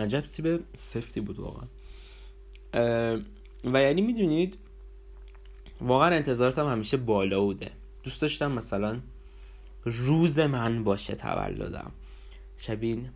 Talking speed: 90 wpm